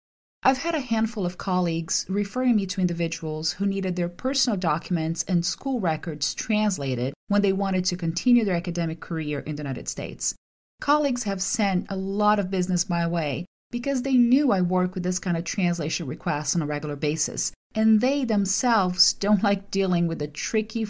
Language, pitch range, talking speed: English, 165-220 Hz, 185 wpm